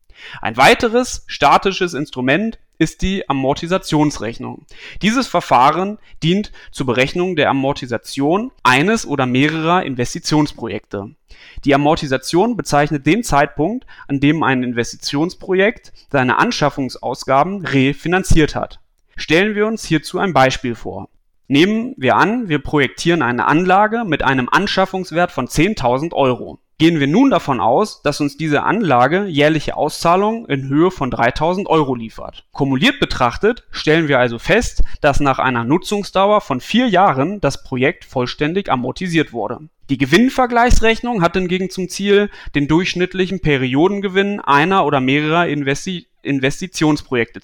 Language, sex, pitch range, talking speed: German, male, 135-185 Hz, 125 wpm